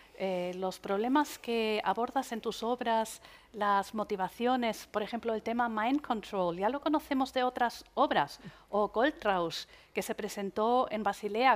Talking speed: 150 wpm